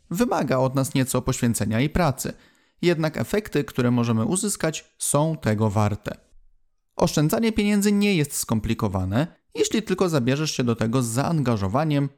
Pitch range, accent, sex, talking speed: 115-160 Hz, native, male, 140 wpm